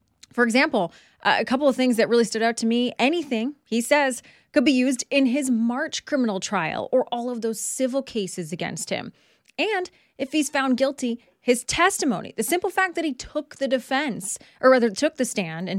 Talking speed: 200 wpm